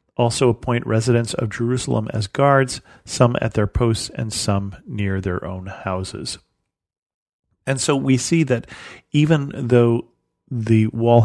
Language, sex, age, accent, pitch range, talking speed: English, male, 40-59, American, 105-125 Hz, 140 wpm